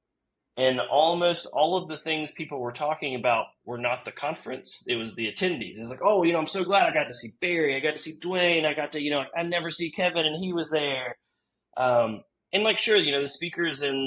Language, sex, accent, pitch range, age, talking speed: English, male, American, 120-155 Hz, 20-39, 250 wpm